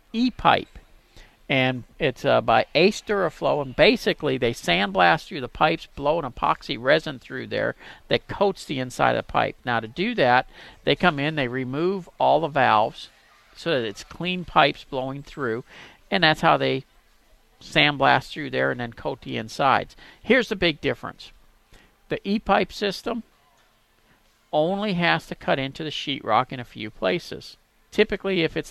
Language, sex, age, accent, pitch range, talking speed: English, male, 50-69, American, 130-195 Hz, 165 wpm